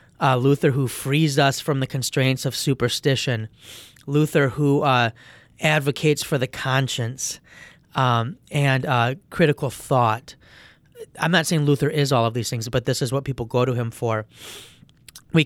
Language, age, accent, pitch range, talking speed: English, 30-49, American, 125-145 Hz, 160 wpm